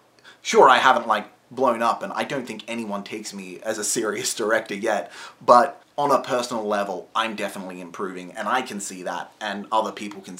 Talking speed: 200 wpm